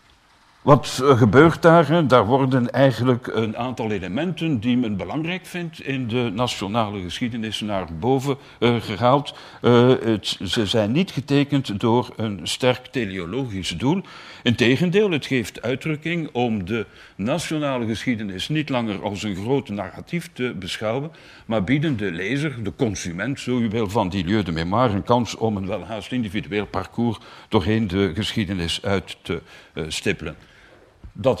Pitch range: 105-140 Hz